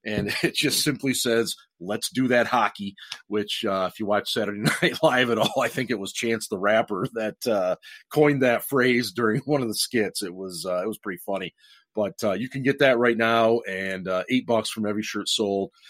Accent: American